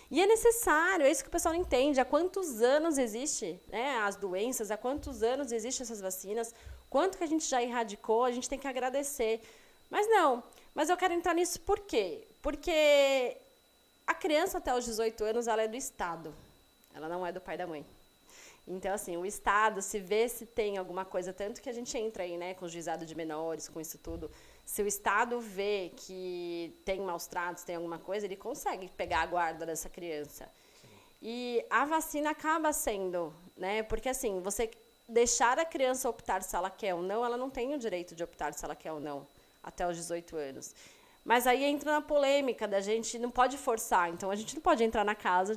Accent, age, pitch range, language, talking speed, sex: Brazilian, 20-39, 185-275 Hz, Portuguese, 205 wpm, female